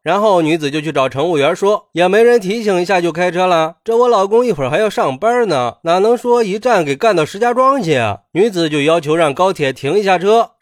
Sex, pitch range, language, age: male, 155-225 Hz, Chinese, 30-49